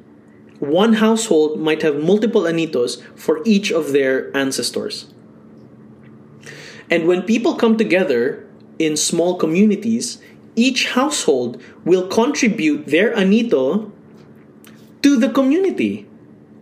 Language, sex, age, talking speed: English, male, 20-39, 100 wpm